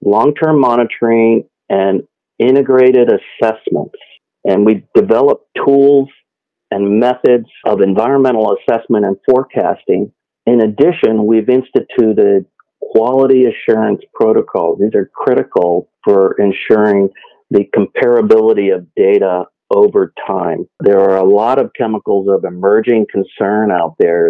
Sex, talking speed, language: male, 110 wpm, English